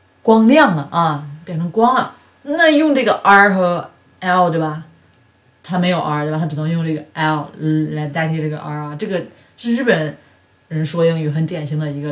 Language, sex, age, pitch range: Chinese, female, 20-39, 155-225 Hz